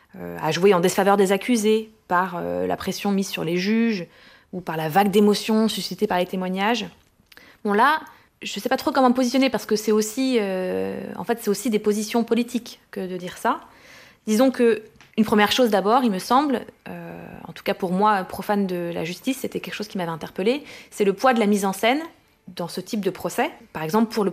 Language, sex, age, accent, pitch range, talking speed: French, female, 20-39, French, 185-235 Hz, 225 wpm